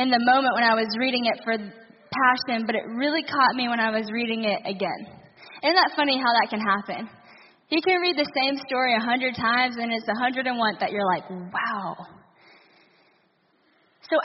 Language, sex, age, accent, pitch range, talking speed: English, female, 10-29, American, 225-275 Hz, 200 wpm